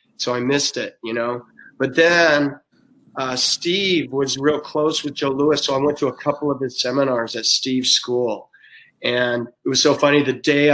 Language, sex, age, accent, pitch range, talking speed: English, male, 30-49, American, 135-165 Hz, 195 wpm